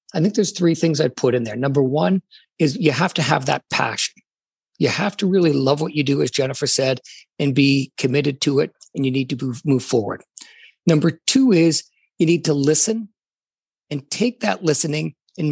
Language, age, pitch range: English, 50-69, 145-175 Hz